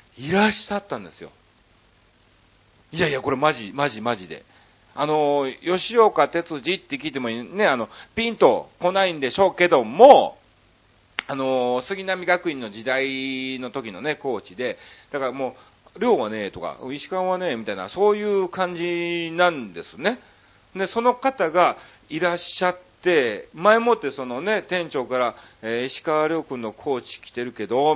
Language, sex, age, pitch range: Japanese, male, 40-59, 130-195 Hz